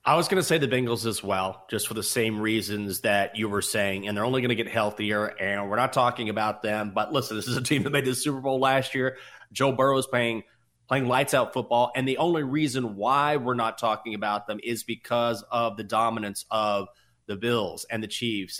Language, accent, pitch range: English, American, 110-140 Hz